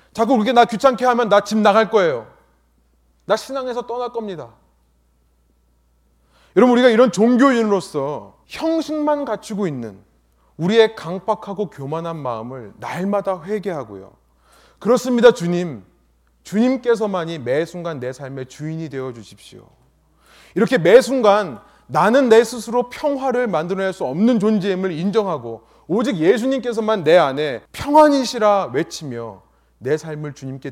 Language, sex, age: Korean, male, 30-49